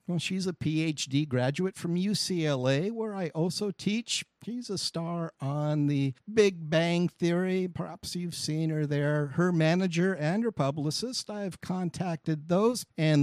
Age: 50-69